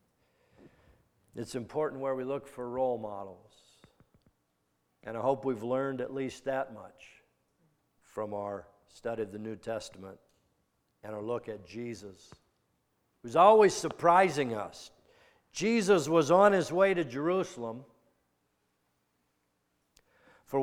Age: 60-79